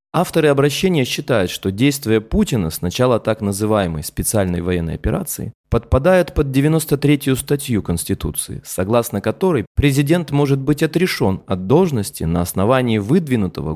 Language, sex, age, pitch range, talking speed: Russian, male, 20-39, 105-150 Hz, 125 wpm